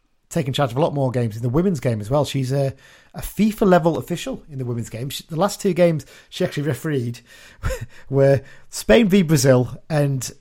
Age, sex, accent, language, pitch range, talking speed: 30-49, male, British, English, 125-150 Hz, 210 wpm